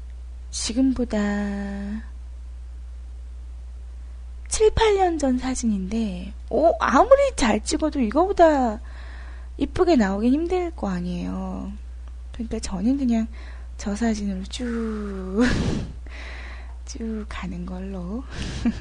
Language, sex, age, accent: Korean, female, 20-39, native